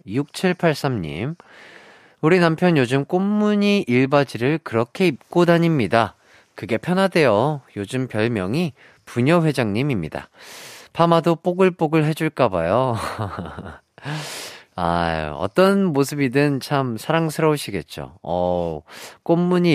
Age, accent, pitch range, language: 40-59, native, 110-165 Hz, Korean